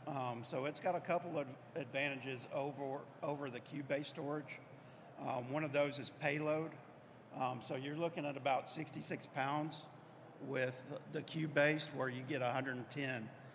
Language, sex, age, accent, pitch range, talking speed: English, male, 50-69, American, 130-150 Hz, 150 wpm